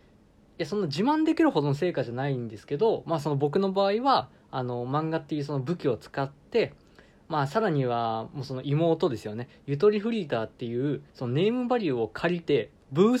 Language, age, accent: Japanese, 20-39, native